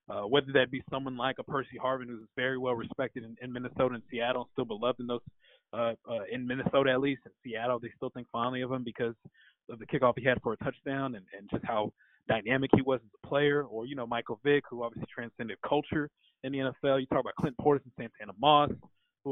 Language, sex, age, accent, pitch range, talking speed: English, male, 20-39, American, 120-140 Hz, 235 wpm